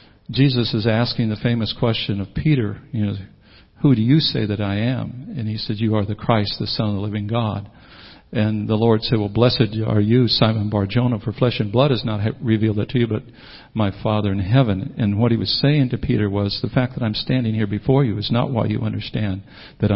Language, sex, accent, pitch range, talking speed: English, male, American, 105-130 Hz, 230 wpm